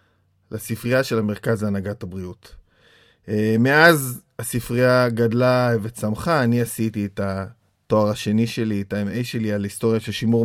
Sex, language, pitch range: male, Hebrew, 110-130 Hz